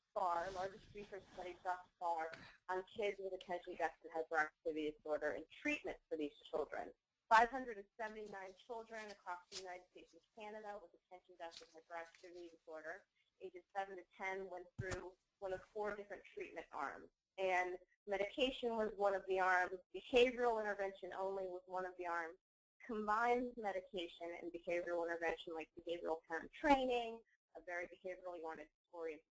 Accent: American